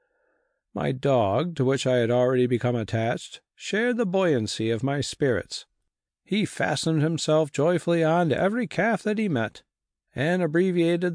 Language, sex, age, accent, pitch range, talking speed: English, male, 50-69, American, 135-195 Hz, 150 wpm